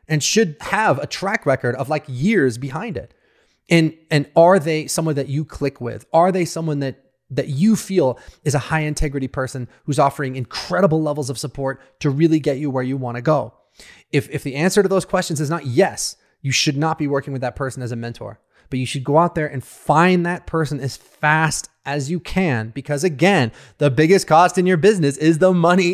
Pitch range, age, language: 130-170 Hz, 30-49, English